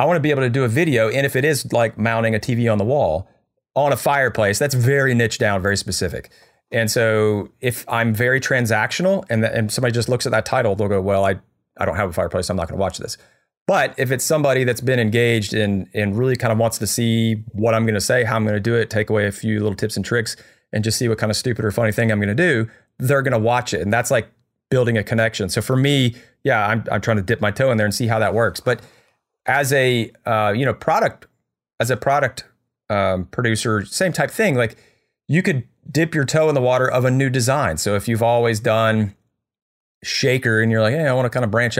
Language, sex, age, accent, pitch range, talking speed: English, male, 40-59, American, 110-125 Hz, 255 wpm